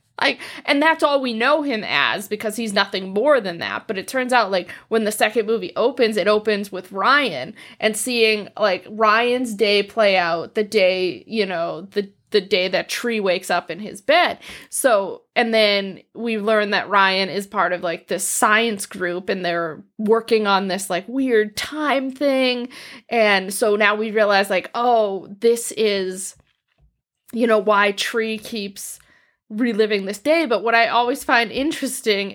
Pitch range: 200-240 Hz